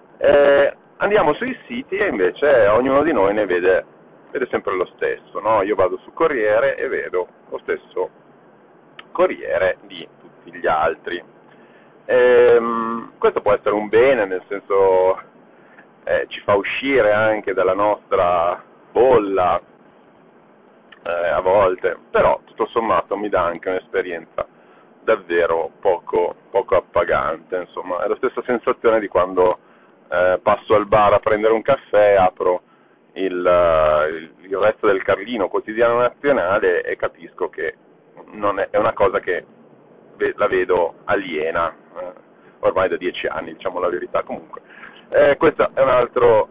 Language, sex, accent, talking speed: Italian, male, native, 140 wpm